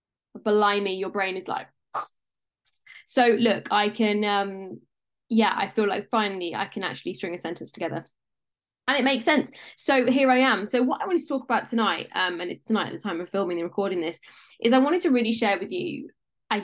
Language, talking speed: English, 215 wpm